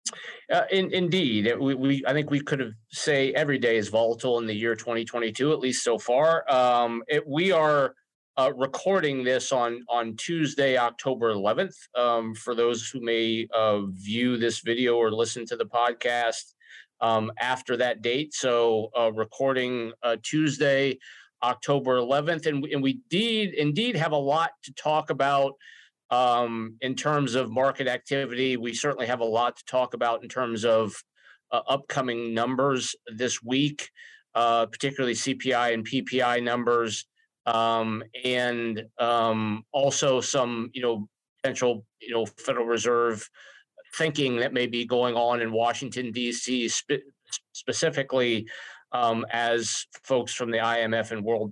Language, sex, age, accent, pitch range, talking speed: English, male, 30-49, American, 115-135 Hz, 155 wpm